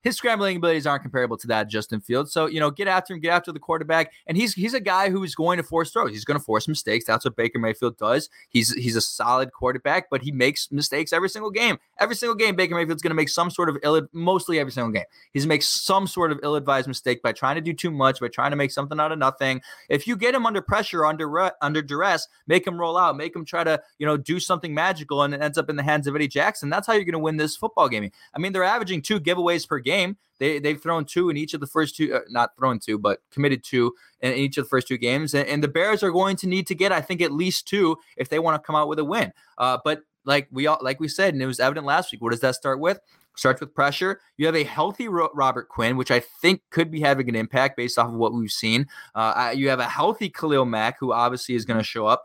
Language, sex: English, male